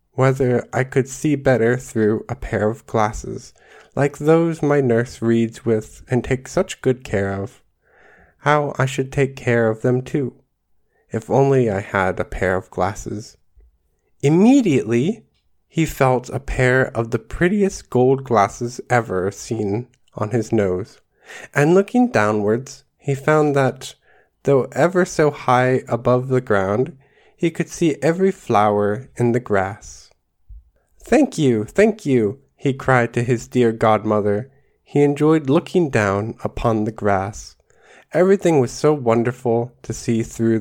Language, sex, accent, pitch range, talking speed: English, male, American, 110-140 Hz, 145 wpm